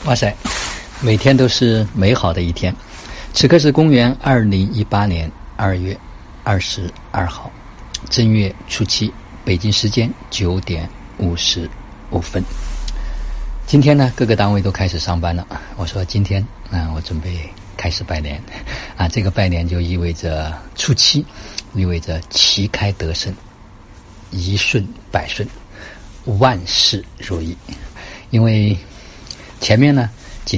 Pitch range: 85-105 Hz